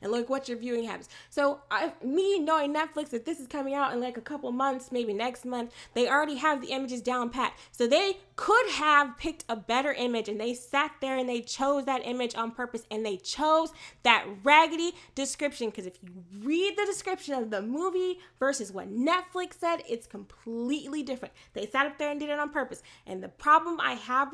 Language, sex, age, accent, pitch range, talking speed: English, female, 10-29, American, 220-295 Hz, 210 wpm